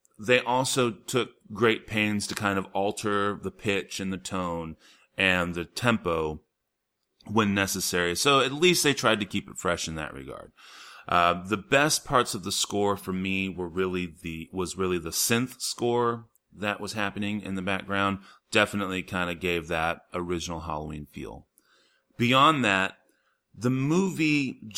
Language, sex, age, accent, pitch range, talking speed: English, male, 30-49, American, 95-125 Hz, 160 wpm